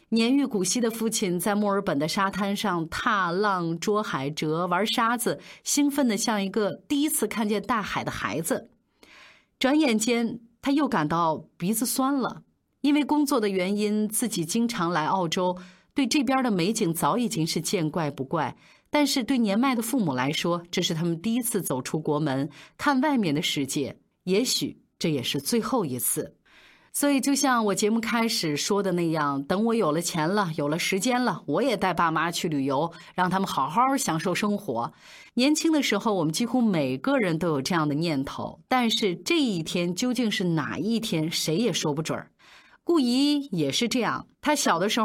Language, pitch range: Chinese, 165-240 Hz